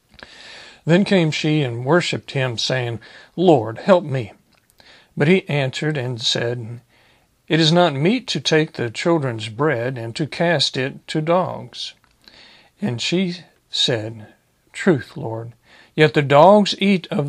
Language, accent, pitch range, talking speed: English, American, 125-165 Hz, 140 wpm